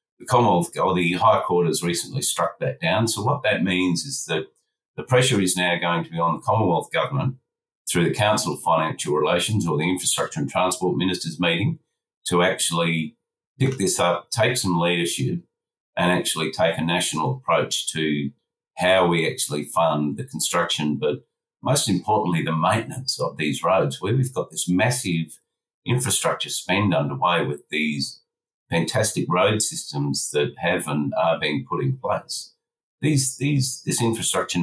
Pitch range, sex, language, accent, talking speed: 80-110 Hz, male, English, Australian, 165 wpm